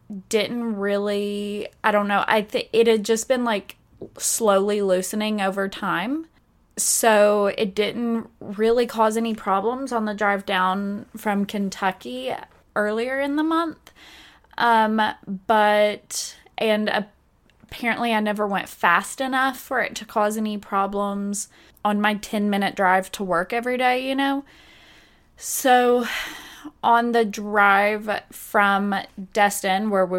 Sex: female